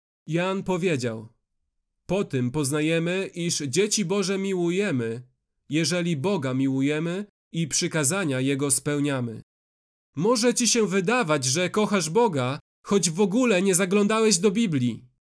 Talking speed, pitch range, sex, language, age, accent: 115 wpm, 170-230 Hz, male, Polish, 30-49, native